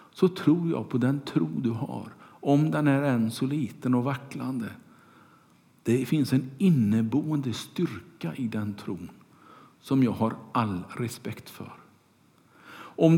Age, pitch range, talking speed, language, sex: 50-69, 115-155 Hz, 140 wpm, Swedish, male